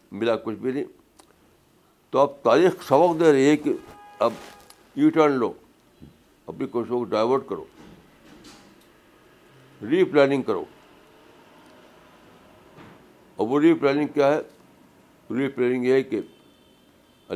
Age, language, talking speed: 60-79, Urdu, 120 wpm